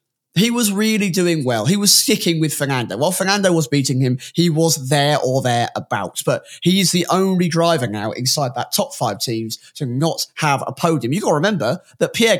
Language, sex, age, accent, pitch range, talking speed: English, male, 20-39, British, 125-170 Hz, 210 wpm